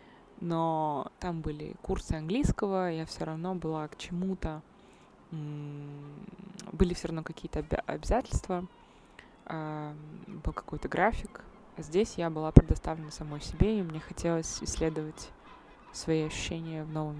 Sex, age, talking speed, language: female, 20-39, 120 wpm, Russian